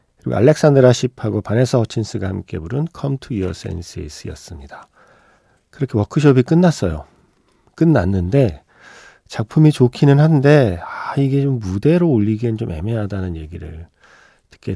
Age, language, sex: 40-59, Korean, male